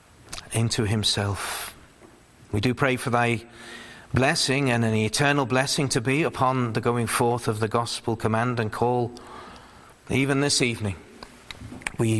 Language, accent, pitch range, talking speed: English, British, 115-140 Hz, 140 wpm